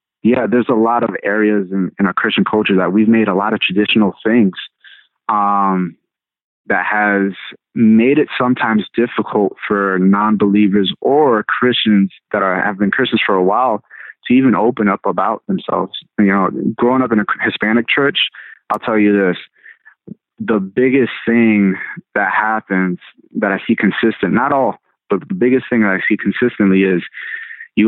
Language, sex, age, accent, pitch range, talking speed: English, male, 30-49, American, 100-115 Hz, 165 wpm